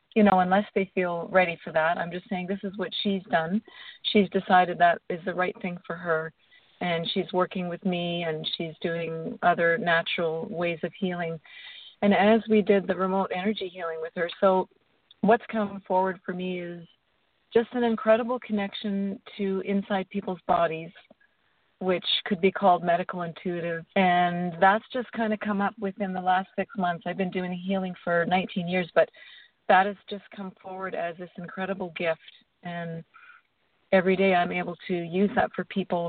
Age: 40-59